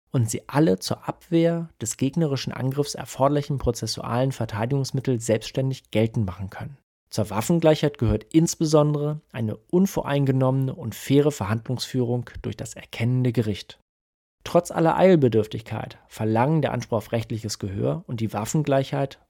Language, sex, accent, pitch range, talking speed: German, male, German, 115-150 Hz, 125 wpm